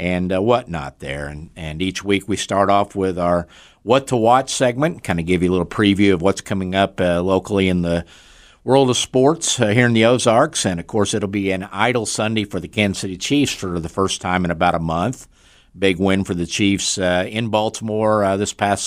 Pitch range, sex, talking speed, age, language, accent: 90-105 Hz, male, 230 wpm, 50-69, English, American